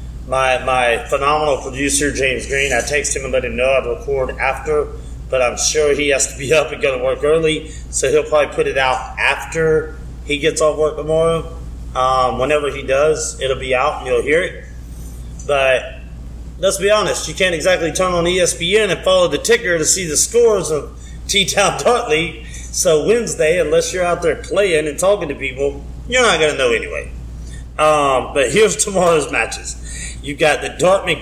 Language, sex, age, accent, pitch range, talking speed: English, male, 30-49, American, 125-190 Hz, 190 wpm